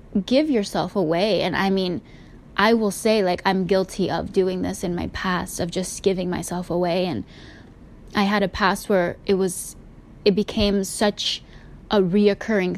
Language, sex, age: English, female, 10-29